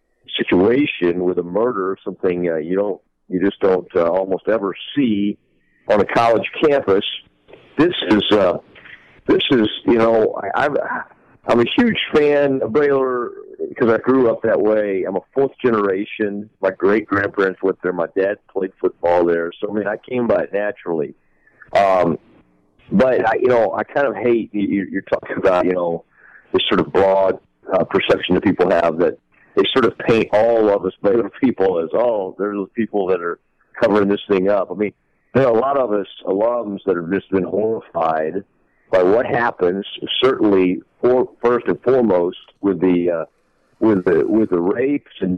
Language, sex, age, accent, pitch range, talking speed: English, male, 50-69, American, 90-115 Hz, 175 wpm